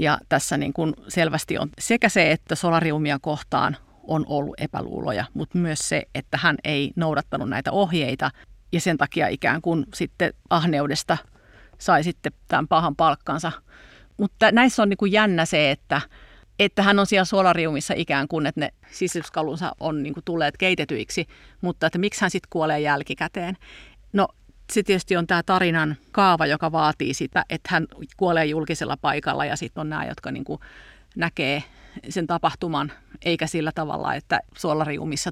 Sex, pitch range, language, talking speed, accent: female, 150-180 Hz, Finnish, 160 wpm, native